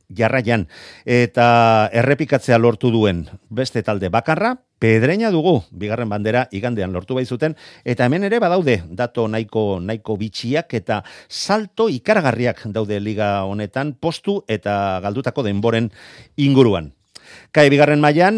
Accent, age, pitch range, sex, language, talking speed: Spanish, 40-59, 100-145 Hz, male, Spanish, 125 wpm